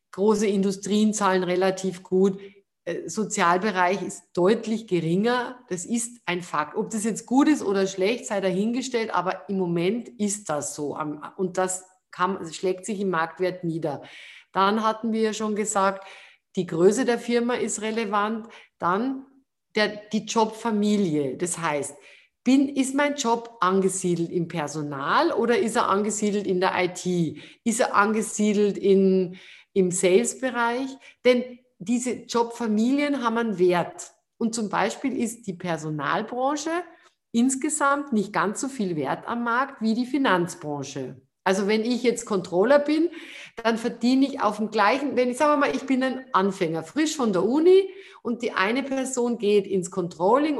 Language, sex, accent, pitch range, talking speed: German, female, German, 185-235 Hz, 150 wpm